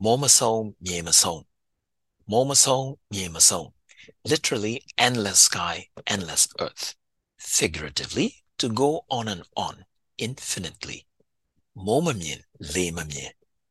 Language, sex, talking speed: English, male, 65 wpm